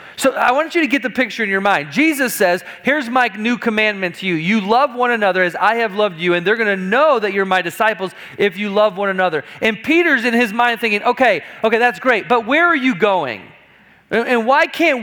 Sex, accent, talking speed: male, American, 240 wpm